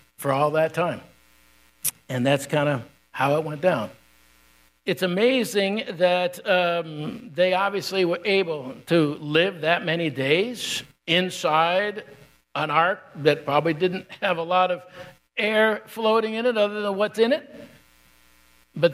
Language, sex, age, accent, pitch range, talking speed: English, male, 60-79, American, 130-185 Hz, 145 wpm